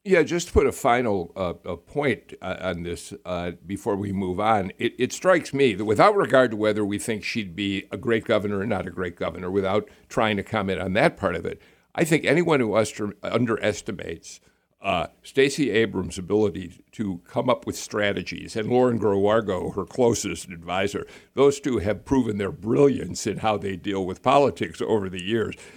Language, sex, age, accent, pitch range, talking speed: English, male, 60-79, American, 100-130 Hz, 185 wpm